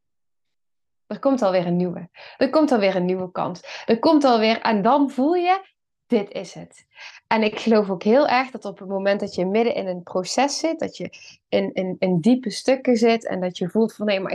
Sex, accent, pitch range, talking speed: female, Dutch, 200-260 Hz, 220 wpm